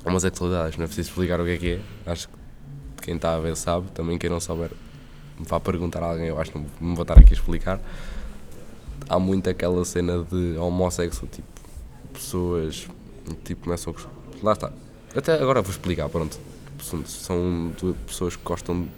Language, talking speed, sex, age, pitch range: Portuguese, 185 wpm, male, 20-39, 85-100 Hz